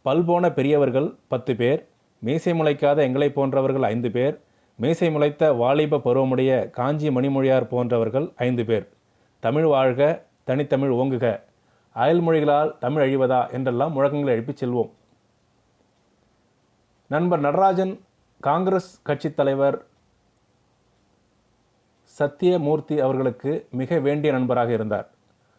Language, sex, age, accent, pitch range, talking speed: Tamil, male, 30-49, native, 125-150 Hz, 95 wpm